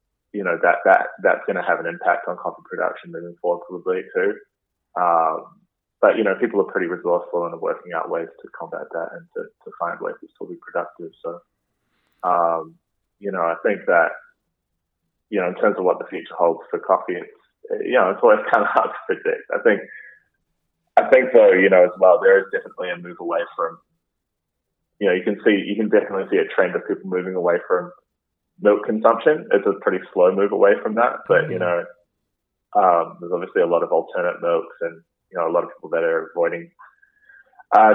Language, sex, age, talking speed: English, male, 20-39, 210 wpm